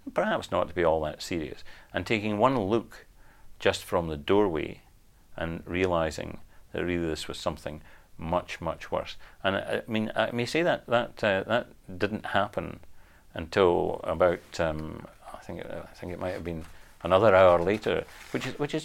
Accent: British